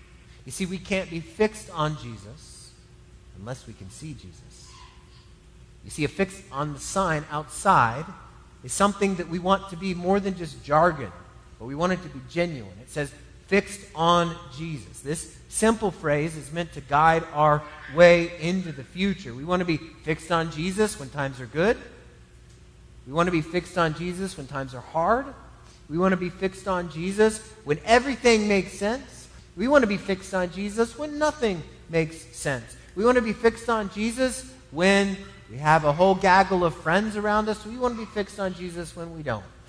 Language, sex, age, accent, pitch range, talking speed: English, male, 30-49, American, 150-205 Hz, 190 wpm